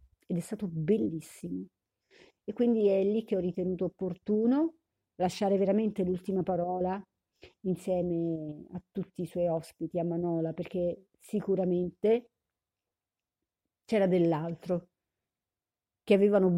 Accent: native